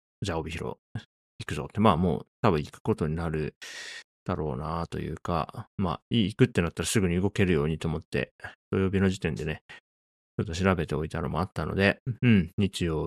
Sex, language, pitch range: male, Japanese, 80-110 Hz